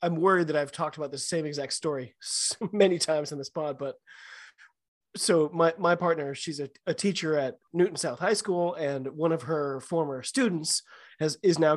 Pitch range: 145-170 Hz